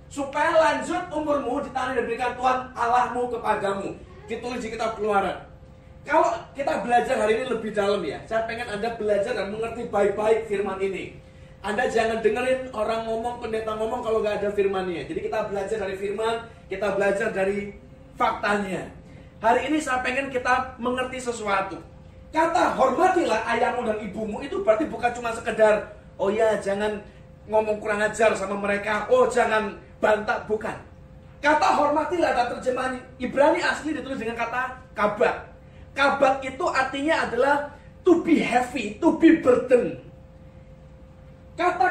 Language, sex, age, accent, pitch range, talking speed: Indonesian, male, 30-49, native, 215-285 Hz, 145 wpm